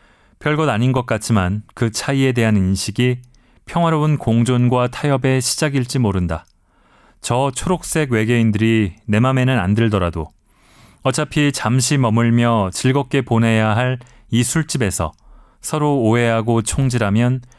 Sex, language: male, Korean